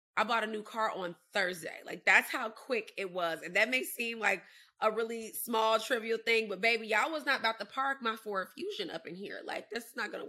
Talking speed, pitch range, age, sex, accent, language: 245 wpm, 185-235 Hz, 30-49, female, American, English